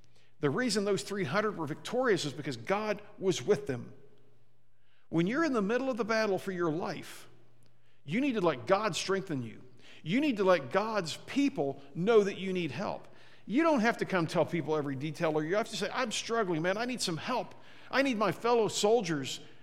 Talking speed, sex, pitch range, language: 205 wpm, male, 155-210 Hz, English